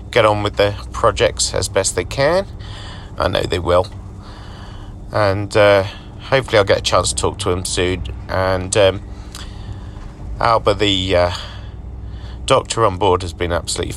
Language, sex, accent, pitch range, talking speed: English, male, British, 95-100 Hz, 155 wpm